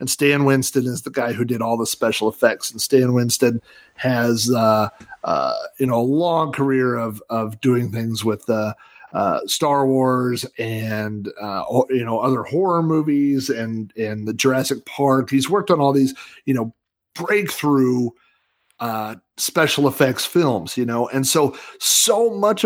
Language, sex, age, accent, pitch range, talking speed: English, male, 40-59, American, 125-145 Hz, 165 wpm